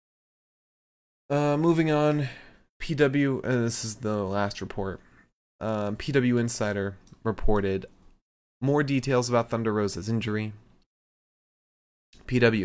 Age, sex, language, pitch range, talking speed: 20-39, male, English, 95-120 Hz, 105 wpm